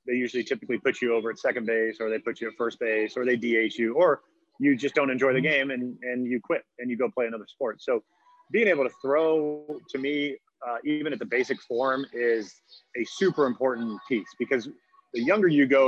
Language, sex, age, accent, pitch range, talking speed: English, male, 30-49, American, 120-140 Hz, 225 wpm